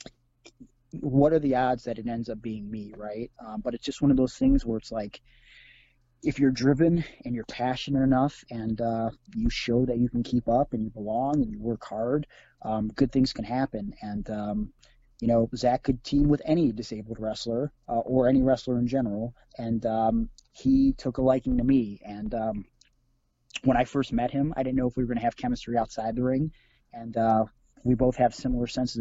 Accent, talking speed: American, 210 wpm